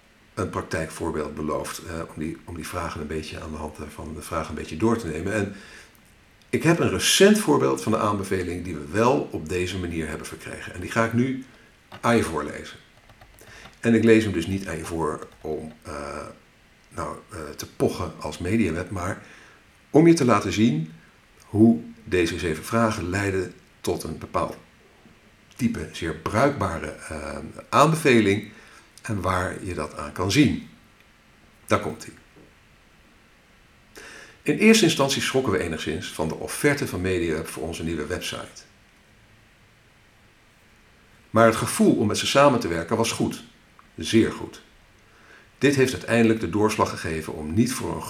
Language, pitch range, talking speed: Dutch, 80-115 Hz, 165 wpm